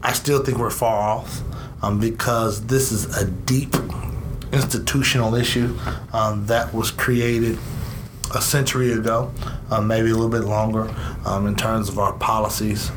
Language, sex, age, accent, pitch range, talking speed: English, male, 30-49, American, 105-125 Hz, 155 wpm